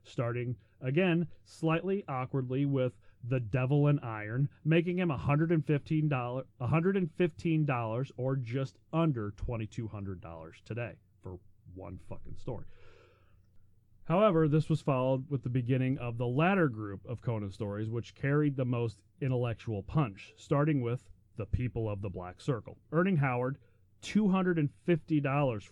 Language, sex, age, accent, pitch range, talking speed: English, male, 30-49, American, 105-145 Hz, 125 wpm